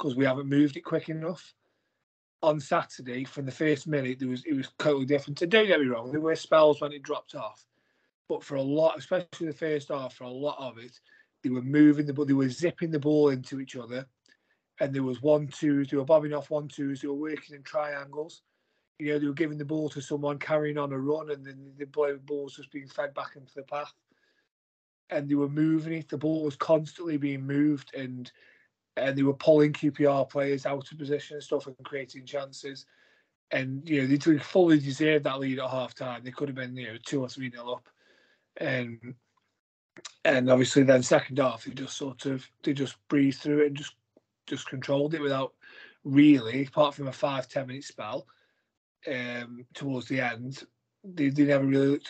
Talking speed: 205 wpm